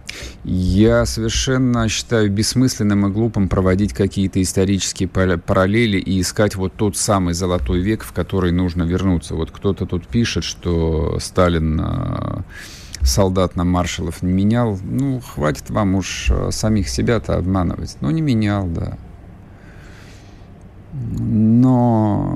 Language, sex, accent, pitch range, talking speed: Russian, male, native, 90-105 Hz, 120 wpm